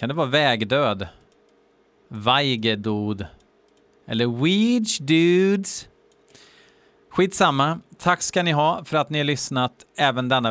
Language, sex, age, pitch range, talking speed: Swedish, male, 30-49, 120-150 Hz, 115 wpm